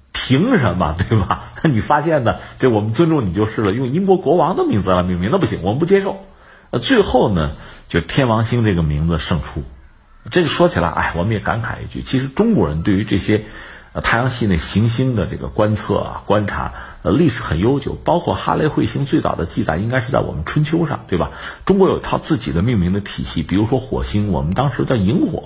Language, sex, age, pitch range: Chinese, male, 50-69, 85-145 Hz